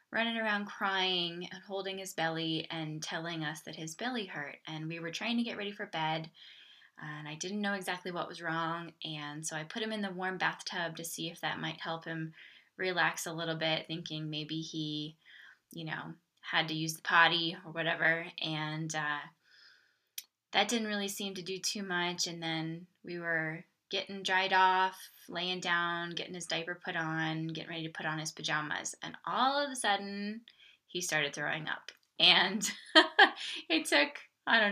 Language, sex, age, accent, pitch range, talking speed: English, female, 10-29, American, 160-195 Hz, 185 wpm